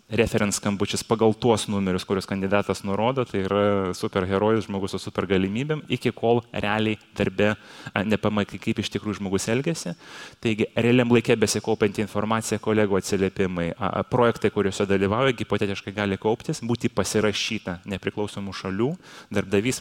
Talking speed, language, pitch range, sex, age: 125 wpm, English, 100-115 Hz, male, 20-39